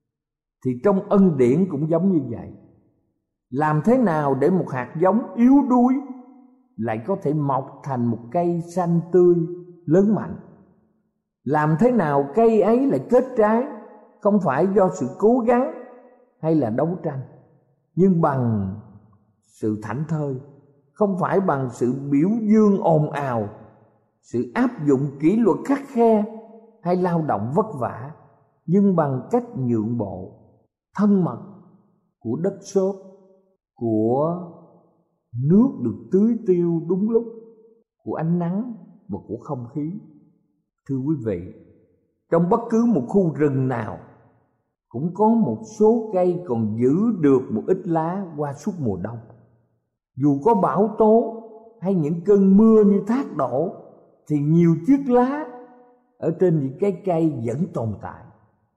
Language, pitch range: Thai, 130-210 Hz